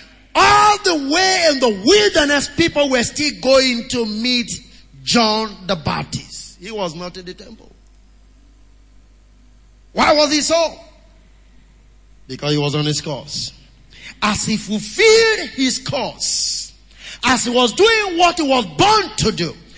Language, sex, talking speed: English, male, 140 wpm